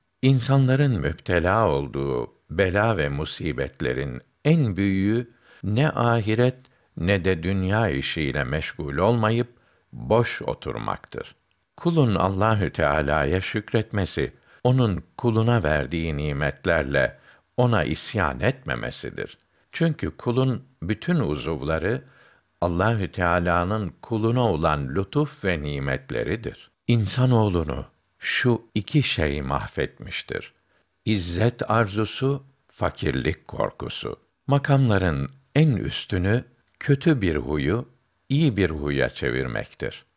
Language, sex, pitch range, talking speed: Turkish, male, 80-120 Hz, 90 wpm